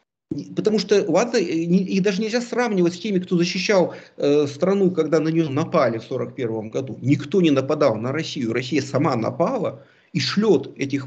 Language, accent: Russian, native